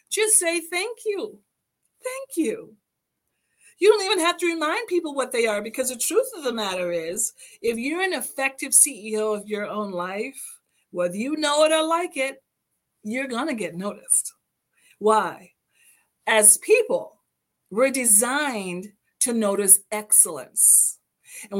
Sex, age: female, 40-59